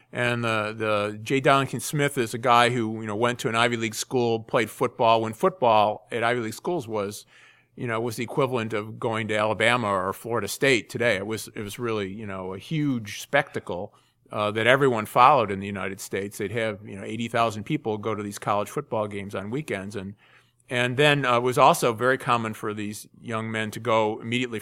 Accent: American